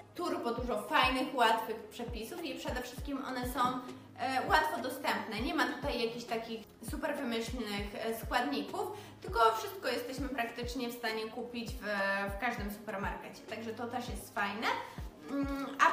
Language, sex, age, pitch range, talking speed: Polish, female, 20-39, 230-275 Hz, 140 wpm